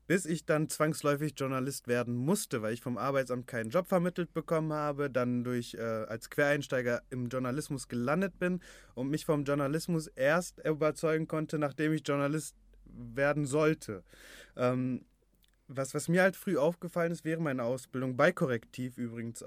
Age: 20-39